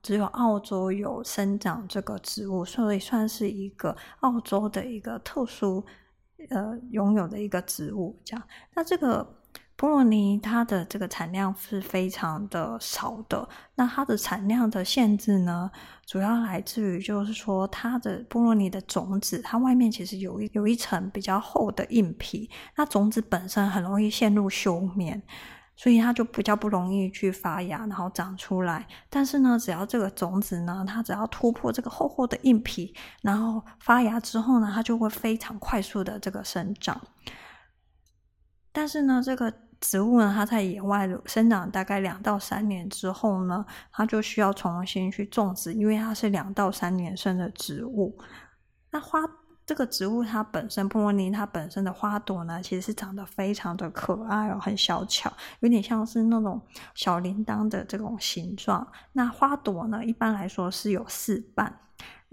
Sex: female